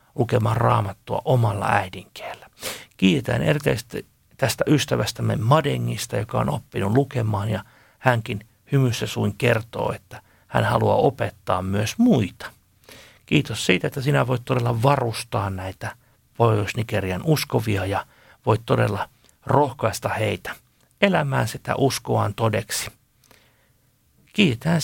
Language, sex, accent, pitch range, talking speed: Finnish, male, native, 110-140 Hz, 105 wpm